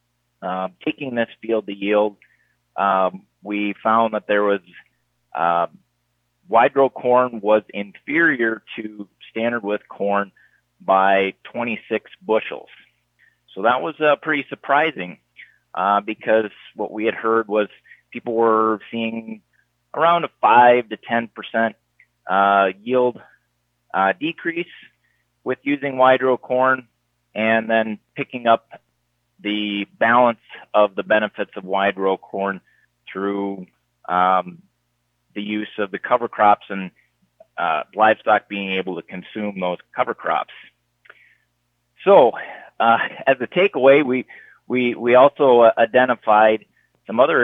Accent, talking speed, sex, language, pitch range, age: American, 125 wpm, male, English, 95-115 Hz, 30-49